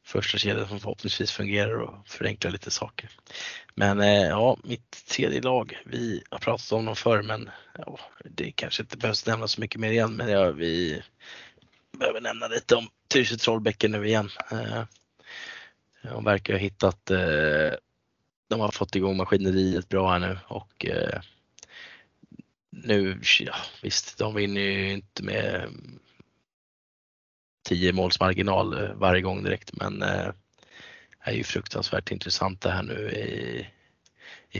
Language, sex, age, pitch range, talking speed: Swedish, male, 20-39, 90-105 Hz, 140 wpm